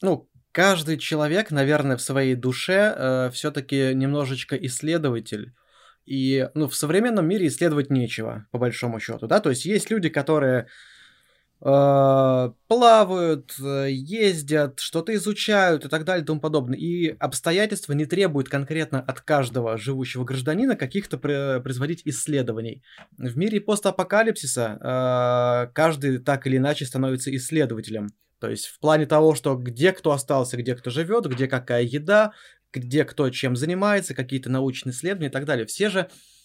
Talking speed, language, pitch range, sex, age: 150 wpm, Russian, 125-160 Hz, male, 20-39